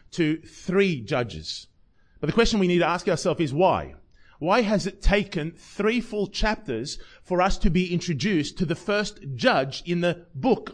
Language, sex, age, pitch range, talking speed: English, male, 30-49, 170-220 Hz, 180 wpm